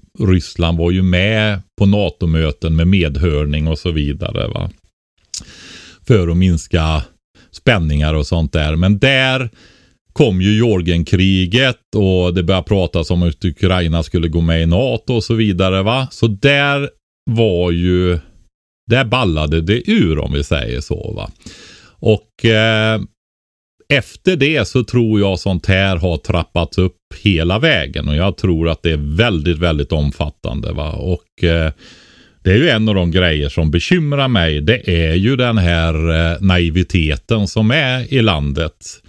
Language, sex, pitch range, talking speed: Swedish, male, 85-105 Hz, 155 wpm